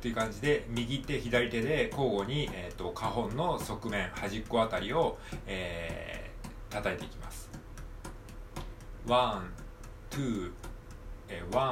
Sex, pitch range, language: male, 100-125 Hz, Japanese